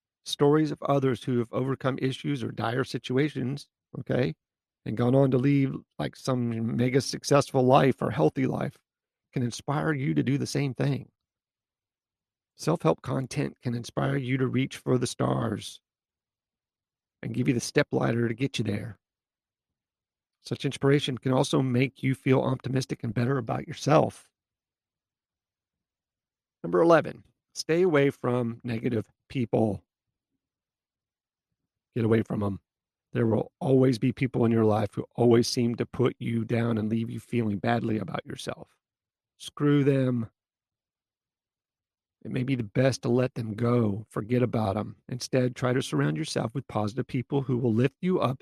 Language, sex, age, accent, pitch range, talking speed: English, male, 40-59, American, 115-135 Hz, 155 wpm